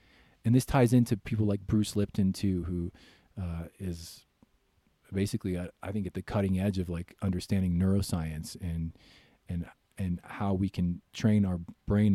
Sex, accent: male, American